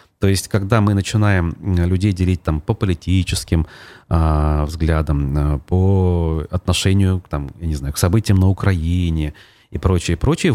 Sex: male